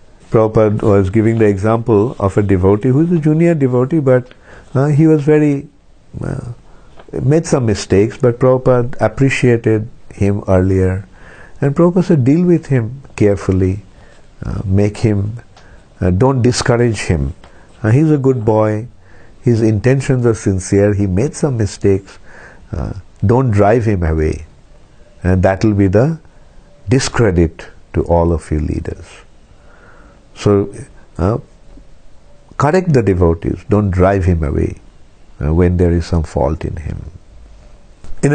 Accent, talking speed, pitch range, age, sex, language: Indian, 140 wpm, 95-130 Hz, 50-69, male, English